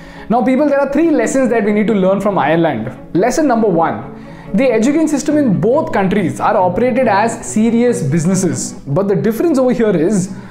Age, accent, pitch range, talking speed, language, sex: 20-39, native, 195-255 Hz, 190 wpm, Hindi, male